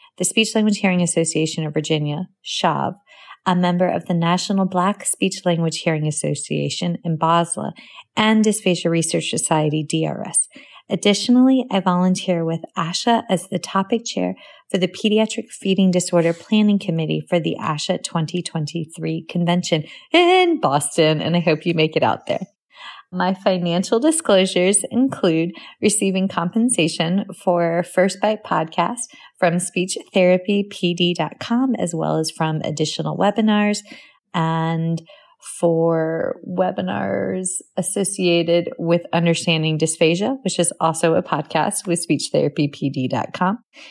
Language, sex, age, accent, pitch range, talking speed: English, female, 30-49, American, 165-205 Hz, 120 wpm